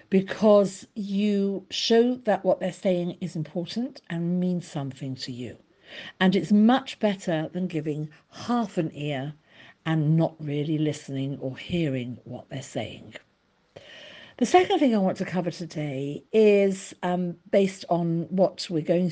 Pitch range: 155-195 Hz